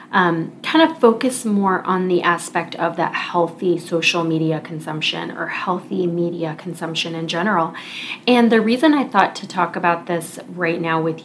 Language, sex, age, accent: English, female, 30-49, American